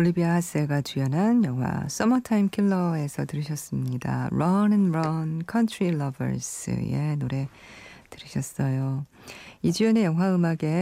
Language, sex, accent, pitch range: Korean, female, native, 140-190 Hz